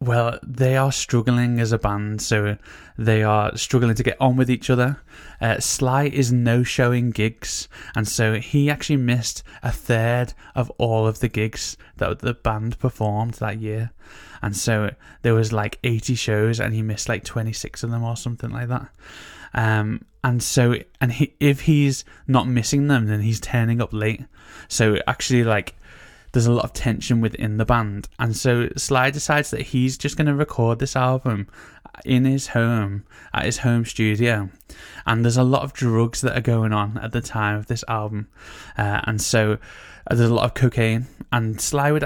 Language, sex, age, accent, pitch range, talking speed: English, male, 10-29, British, 110-125 Hz, 185 wpm